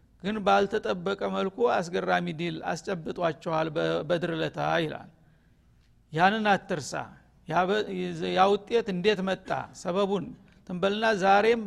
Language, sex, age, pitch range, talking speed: Amharic, male, 50-69, 175-215 Hz, 85 wpm